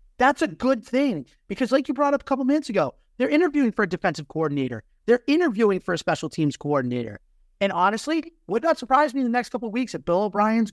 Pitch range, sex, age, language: 150-230 Hz, male, 30-49, English